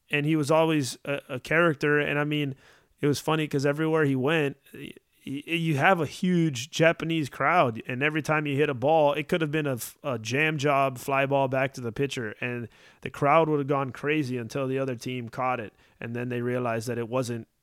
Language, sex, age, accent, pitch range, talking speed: English, male, 30-49, American, 135-160 Hz, 215 wpm